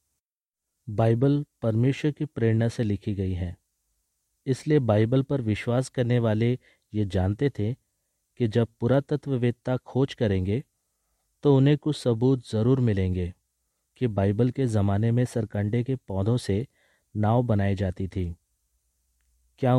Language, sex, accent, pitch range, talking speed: Hindi, male, native, 95-125 Hz, 125 wpm